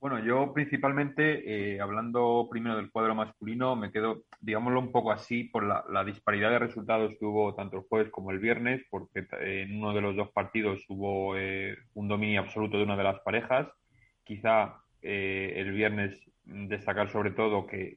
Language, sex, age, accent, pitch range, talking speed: Spanish, male, 30-49, Spanish, 100-110 Hz, 180 wpm